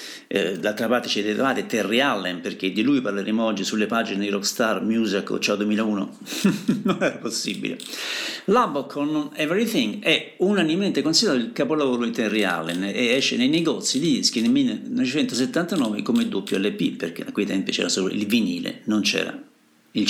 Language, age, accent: Italian, 50-69, native